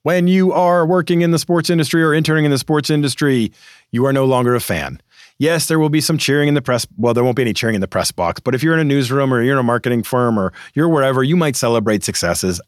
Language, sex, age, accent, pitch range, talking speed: English, male, 40-59, American, 105-150 Hz, 275 wpm